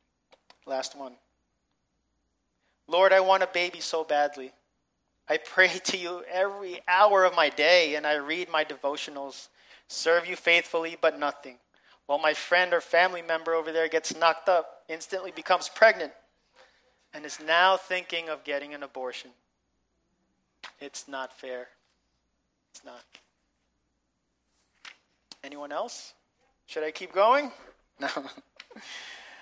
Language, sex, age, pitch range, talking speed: English, male, 30-49, 130-180 Hz, 125 wpm